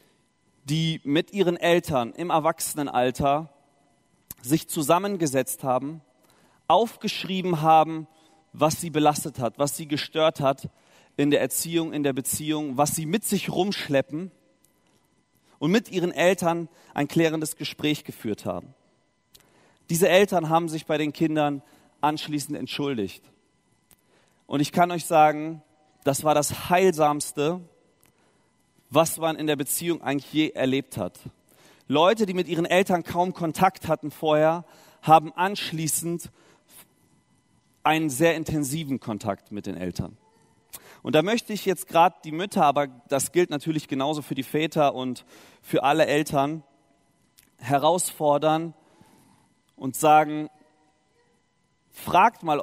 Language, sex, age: German, male, 30-49